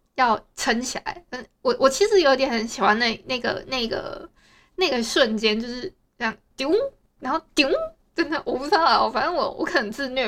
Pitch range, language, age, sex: 225-310 Hz, Chinese, 20-39, female